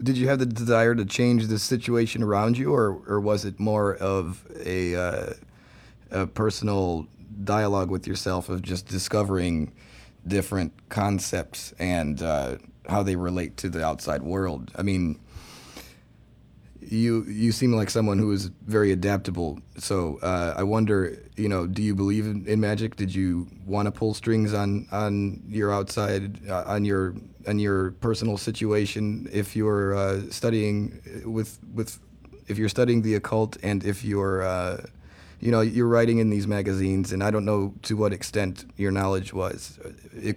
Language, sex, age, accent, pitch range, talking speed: English, male, 30-49, American, 95-110 Hz, 165 wpm